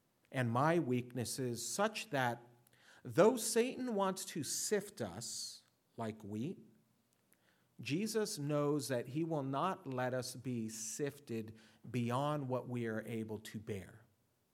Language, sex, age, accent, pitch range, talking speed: English, male, 50-69, American, 115-155 Hz, 125 wpm